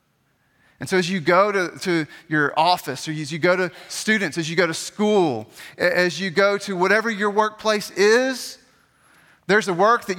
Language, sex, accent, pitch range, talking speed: English, male, American, 175-245 Hz, 190 wpm